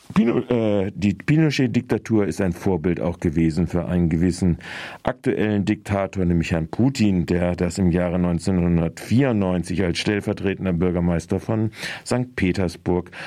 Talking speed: 120 wpm